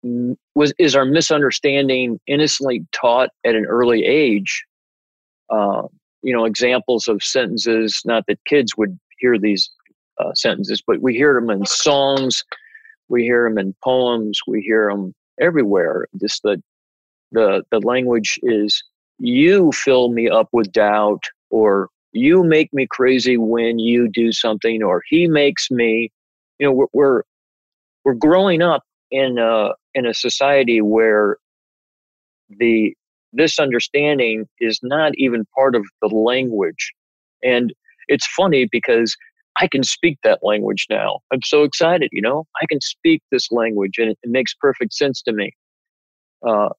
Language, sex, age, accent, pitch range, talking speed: English, male, 40-59, American, 110-150 Hz, 150 wpm